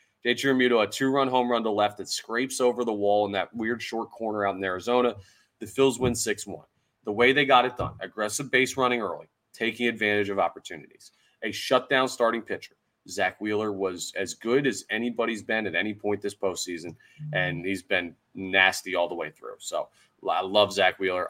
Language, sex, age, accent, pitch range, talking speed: English, male, 30-49, American, 100-125 Hz, 190 wpm